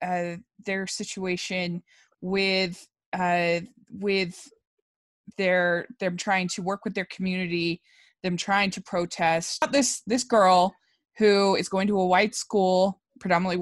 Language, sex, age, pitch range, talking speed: English, female, 20-39, 170-200 Hz, 130 wpm